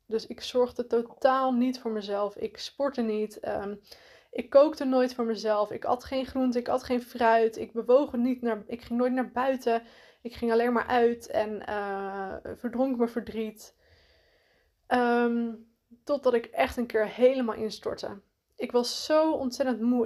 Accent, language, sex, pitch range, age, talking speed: Dutch, Dutch, female, 220-255 Hz, 20-39, 170 wpm